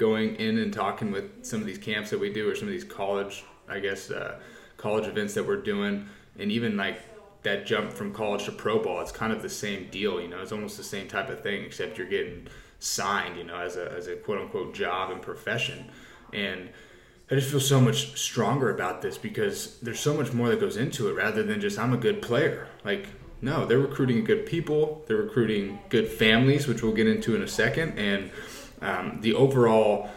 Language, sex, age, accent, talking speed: English, male, 20-39, American, 215 wpm